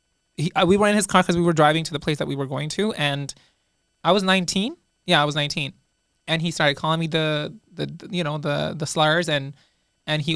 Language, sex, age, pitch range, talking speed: Punjabi, male, 20-39, 150-185 Hz, 245 wpm